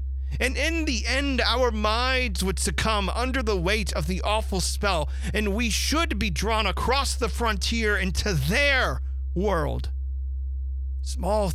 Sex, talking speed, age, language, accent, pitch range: male, 140 wpm, 40-59, English, American, 65-70 Hz